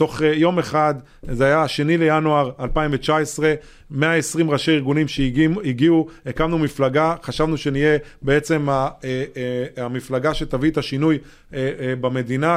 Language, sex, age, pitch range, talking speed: Hebrew, male, 30-49, 135-165 Hz, 110 wpm